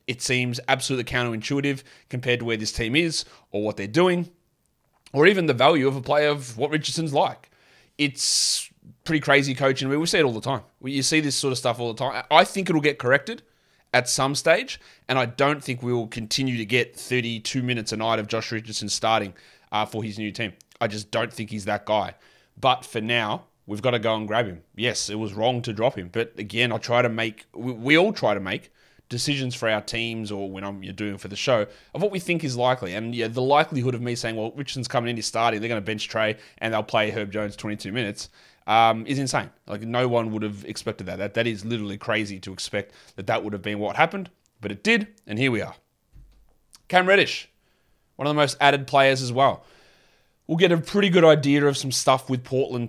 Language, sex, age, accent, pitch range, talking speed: English, male, 30-49, Australian, 110-140 Hz, 235 wpm